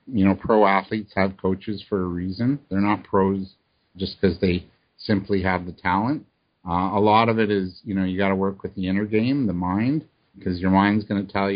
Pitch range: 100-130 Hz